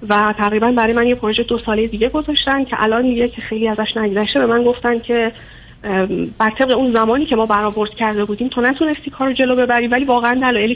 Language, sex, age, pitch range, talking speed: Persian, female, 30-49, 205-245 Hz, 220 wpm